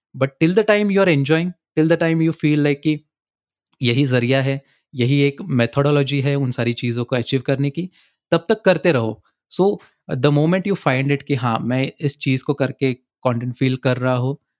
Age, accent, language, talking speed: 20-39, native, Hindi, 205 wpm